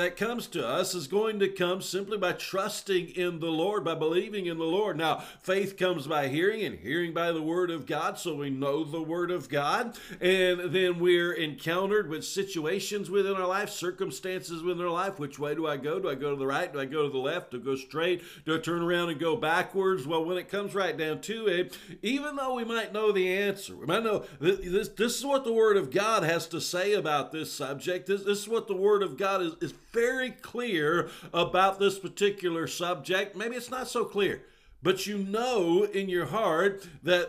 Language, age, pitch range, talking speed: English, 50-69, 170-210 Hz, 225 wpm